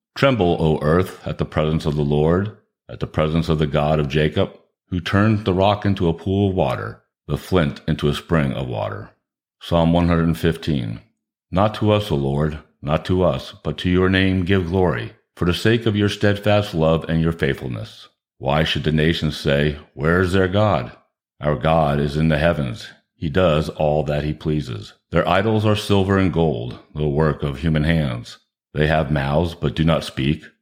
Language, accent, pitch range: English, American, 75-95 Hz